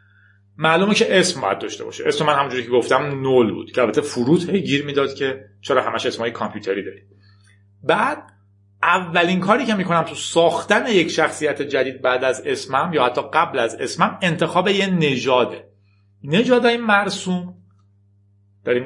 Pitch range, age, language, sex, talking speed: 100-155 Hz, 40-59, Persian, male, 155 wpm